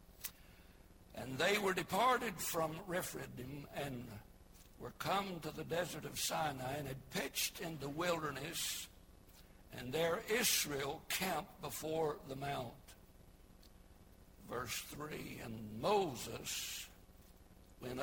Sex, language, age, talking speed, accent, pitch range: male, English, 60-79, 105 wpm, American, 100-165 Hz